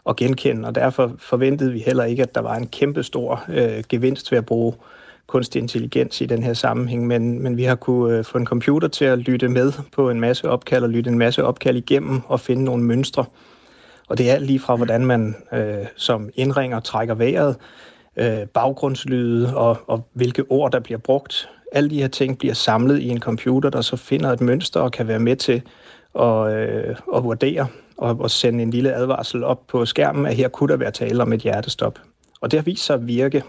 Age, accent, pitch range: 30-49, native, 115-135 Hz